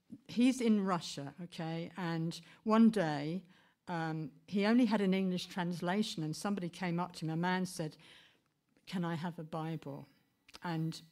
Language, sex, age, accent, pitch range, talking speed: English, female, 60-79, British, 160-195 Hz, 155 wpm